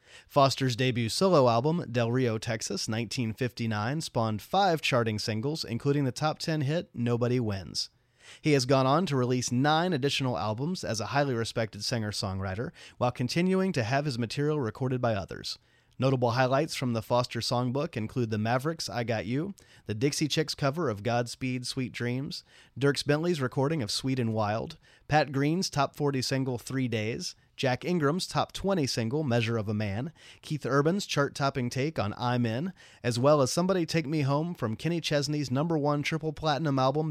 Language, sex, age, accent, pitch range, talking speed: English, male, 30-49, American, 115-145 Hz, 175 wpm